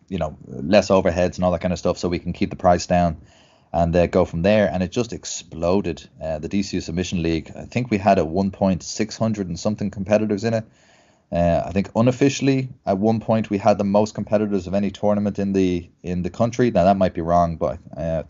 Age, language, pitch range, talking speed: 30-49, English, 90-105 Hz, 230 wpm